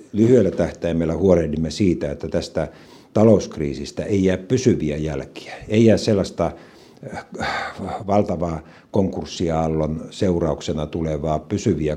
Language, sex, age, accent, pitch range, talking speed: Finnish, male, 60-79, native, 75-95 Hz, 95 wpm